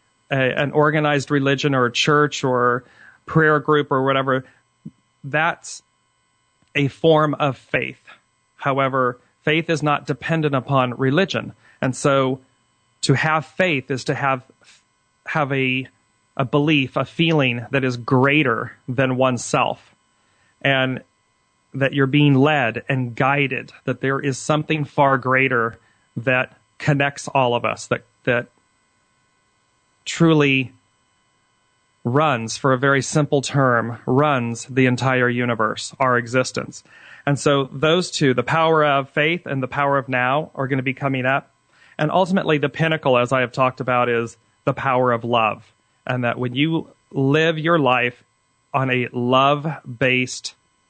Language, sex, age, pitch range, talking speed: English, male, 40-59, 115-145 Hz, 140 wpm